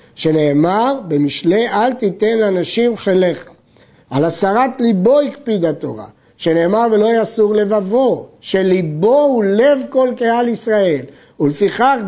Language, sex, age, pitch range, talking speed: Hebrew, male, 50-69, 185-240 Hz, 110 wpm